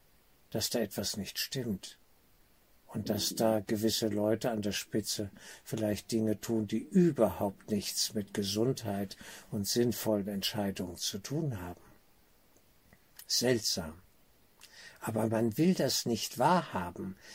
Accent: German